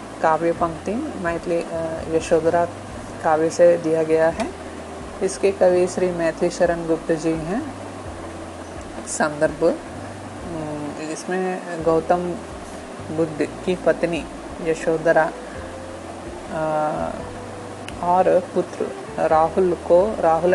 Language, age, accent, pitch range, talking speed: Telugu, 30-49, native, 160-180 Hz, 85 wpm